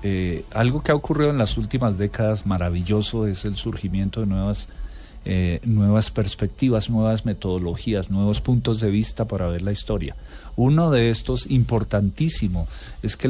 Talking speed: 155 wpm